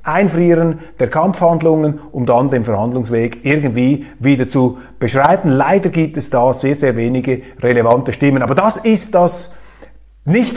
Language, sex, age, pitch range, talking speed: German, male, 40-59, 130-165 Hz, 140 wpm